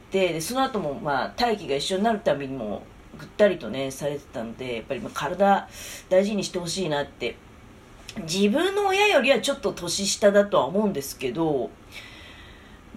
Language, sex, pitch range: Japanese, female, 150-225 Hz